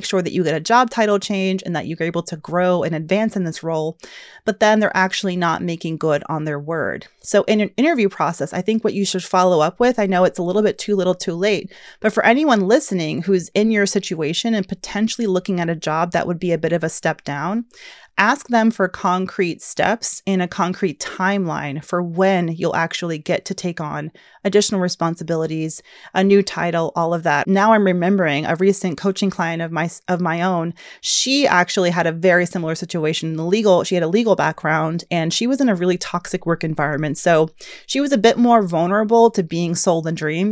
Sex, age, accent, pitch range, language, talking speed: female, 30-49, American, 165-205 Hz, English, 220 wpm